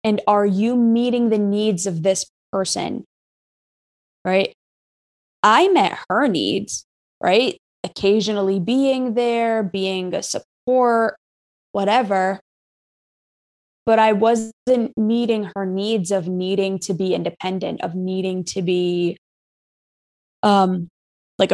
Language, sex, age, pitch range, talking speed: English, female, 20-39, 185-210 Hz, 110 wpm